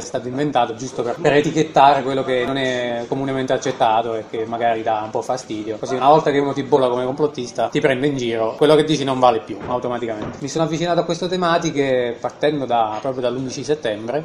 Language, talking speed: Italian, 215 wpm